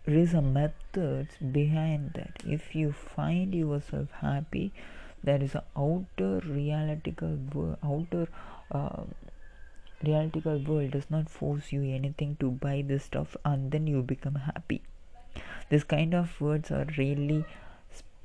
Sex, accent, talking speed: female, Indian, 130 wpm